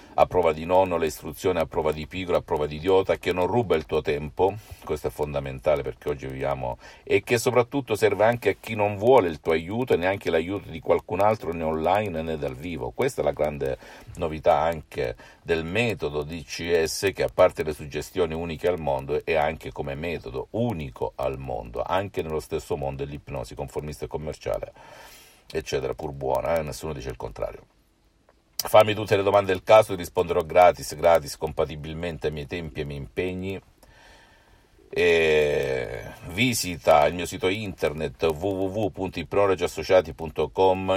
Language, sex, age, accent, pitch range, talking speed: Italian, male, 50-69, native, 75-105 Hz, 165 wpm